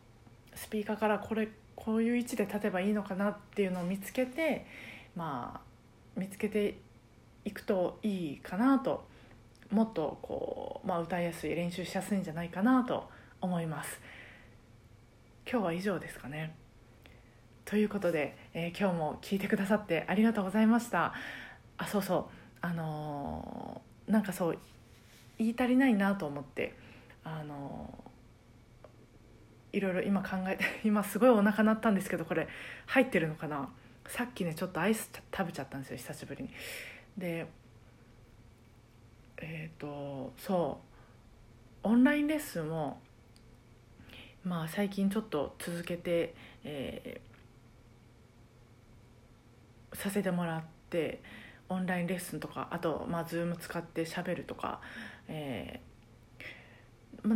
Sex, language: female, Japanese